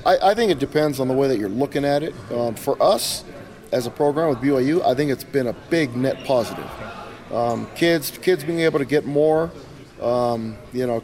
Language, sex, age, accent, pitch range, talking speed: English, male, 30-49, American, 120-145 Hz, 215 wpm